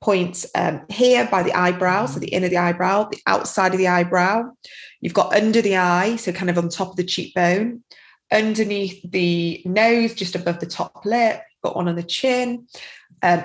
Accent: British